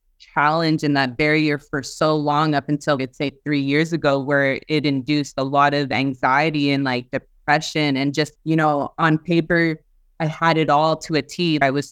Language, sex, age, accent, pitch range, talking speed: English, female, 20-39, American, 145-160 Hz, 195 wpm